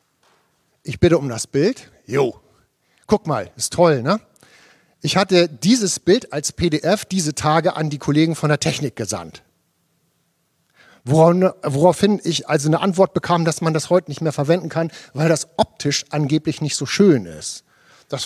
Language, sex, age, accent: German, male, 50-69, German